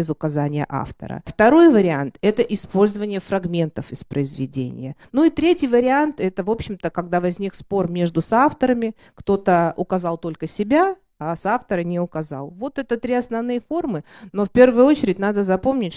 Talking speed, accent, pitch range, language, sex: 160 wpm, native, 170-230 Hz, Russian, female